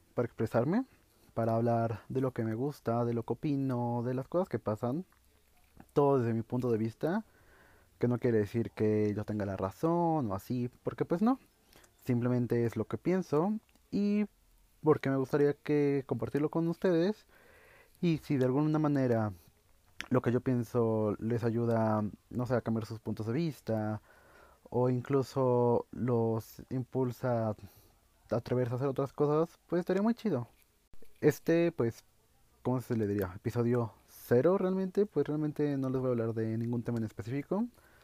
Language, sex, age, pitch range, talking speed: Spanish, male, 30-49, 115-140 Hz, 165 wpm